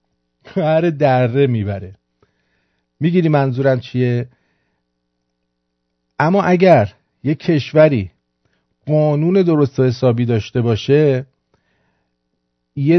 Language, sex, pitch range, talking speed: English, male, 95-150 Hz, 75 wpm